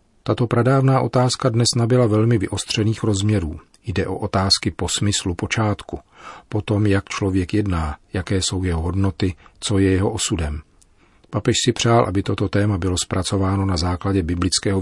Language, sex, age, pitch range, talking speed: Czech, male, 40-59, 90-105 Hz, 150 wpm